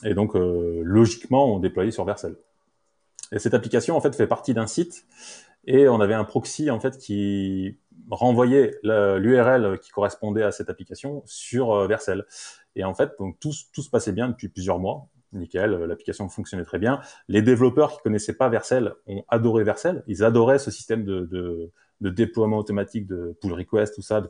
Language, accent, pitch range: French, French, 95-125 Hz